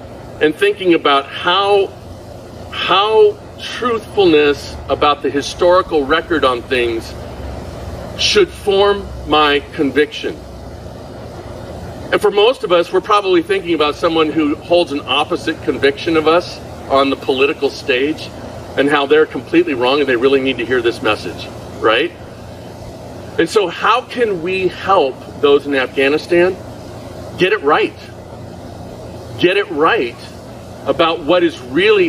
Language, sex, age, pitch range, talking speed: English, male, 50-69, 120-175 Hz, 130 wpm